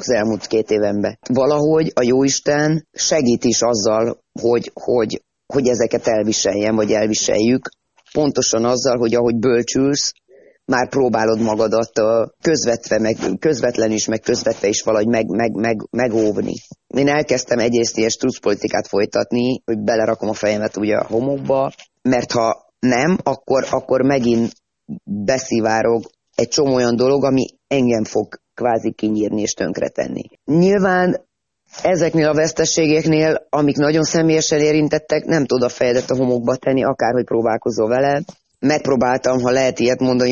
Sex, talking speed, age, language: female, 125 wpm, 30-49, Hungarian